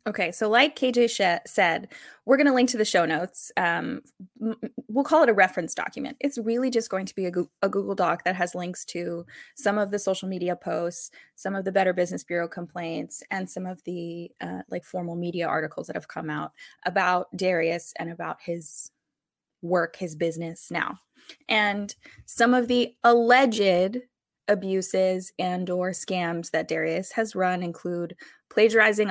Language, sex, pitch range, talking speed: English, female, 175-220 Hz, 170 wpm